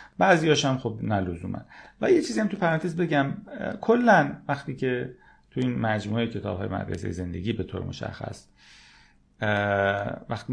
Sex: male